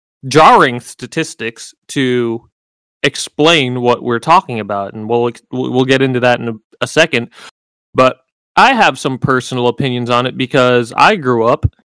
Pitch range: 120-155 Hz